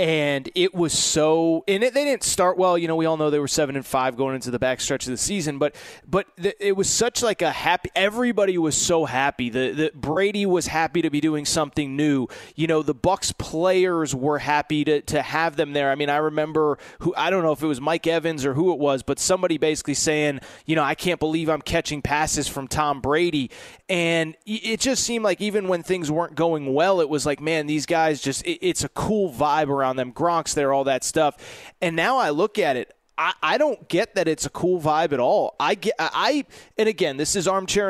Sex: male